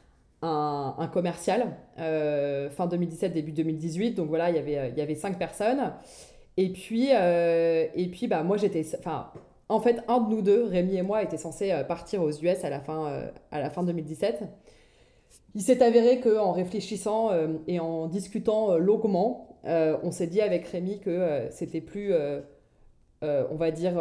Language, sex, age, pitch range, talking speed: French, female, 20-39, 155-195 Hz, 180 wpm